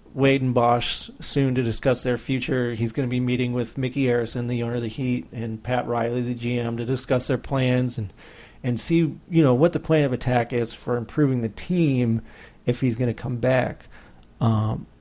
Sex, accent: male, American